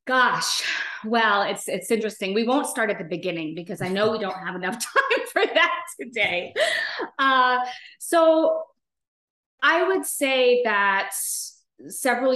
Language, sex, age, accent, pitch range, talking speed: English, female, 20-39, American, 180-240 Hz, 140 wpm